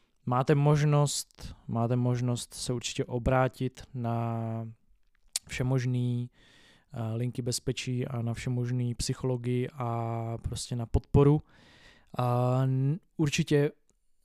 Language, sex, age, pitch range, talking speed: Czech, male, 20-39, 120-135 Hz, 90 wpm